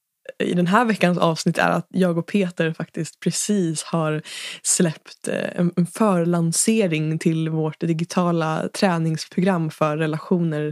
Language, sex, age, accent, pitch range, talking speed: Swedish, female, 20-39, native, 165-190 Hz, 125 wpm